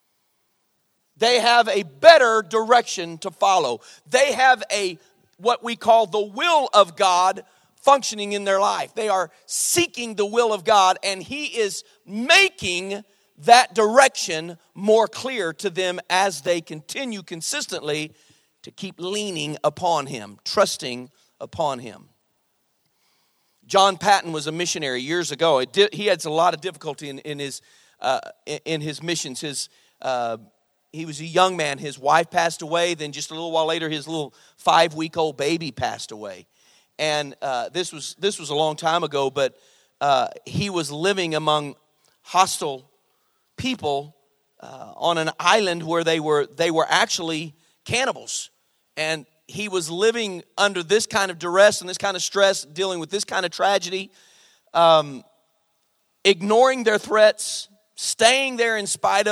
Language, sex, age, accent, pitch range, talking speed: English, male, 40-59, American, 155-210 Hz, 155 wpm